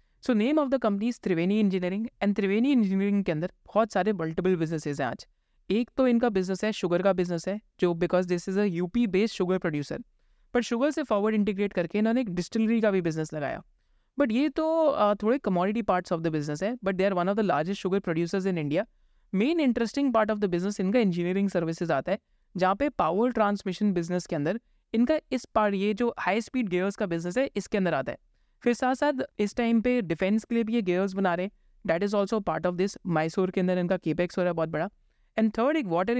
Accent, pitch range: native, 180-225 Hz